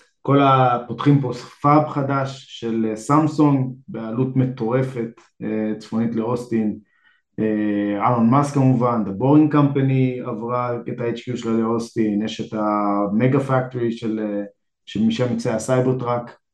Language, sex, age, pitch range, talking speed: Hebrew, male, 20-39, 110-135 Hz, 100 wpm